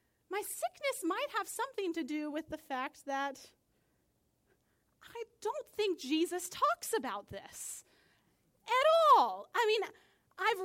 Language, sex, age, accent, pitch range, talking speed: English, female, 30-49, American, 270-360 Hz, 130 wpm